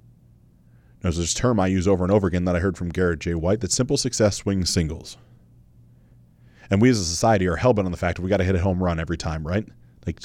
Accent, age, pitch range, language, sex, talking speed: American, 30-49, 80-110 Hz, English, male, 250 wpm